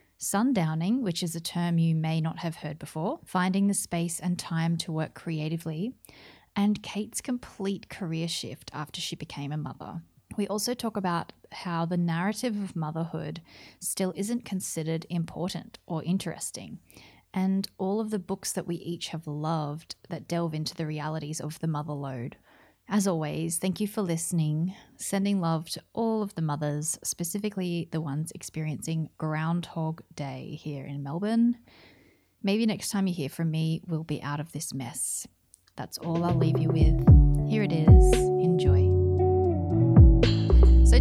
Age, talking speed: 30-49, 160 wpm